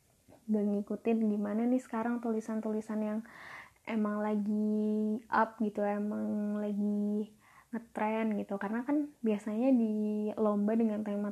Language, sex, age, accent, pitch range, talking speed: Indonesian, female, 20-39, native, 215-230 Hz, 115 wpm